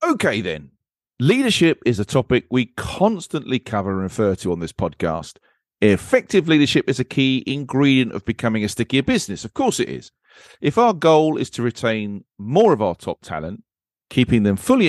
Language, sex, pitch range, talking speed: English, male, 100-140 Hz, 175 wpm